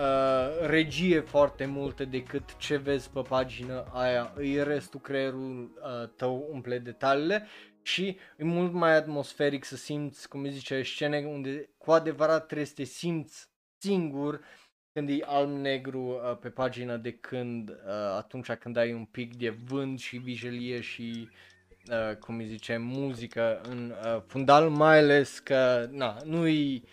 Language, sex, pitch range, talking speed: Romanian, male, 120-150 Hz, 135 wpm